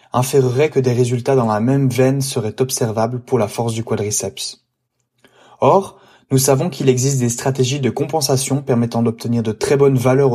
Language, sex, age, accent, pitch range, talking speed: French, male, 20-39, French, 115-135 Hz, 175 wpm